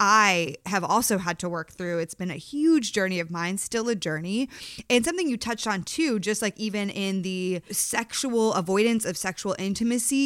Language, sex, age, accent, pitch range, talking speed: English, female, 20-39, American, 185-230 Hz, 195 wpm